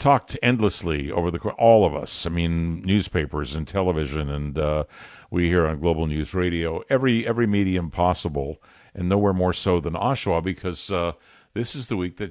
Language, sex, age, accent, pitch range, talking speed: English, male, 50-69, American, 90-120 Hz, 180 wpm